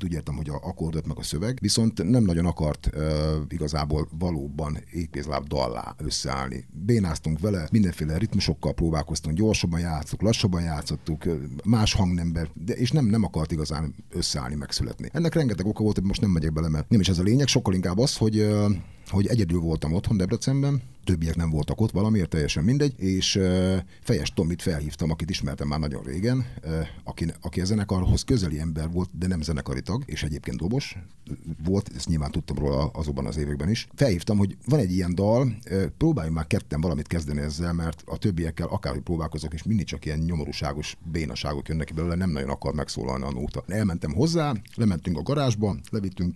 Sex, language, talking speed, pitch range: male, English, 180 wpm, 80-105 Hz